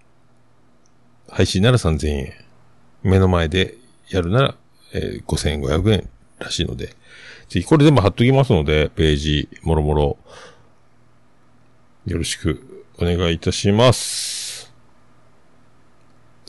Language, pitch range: Japanese, 80-125 Hz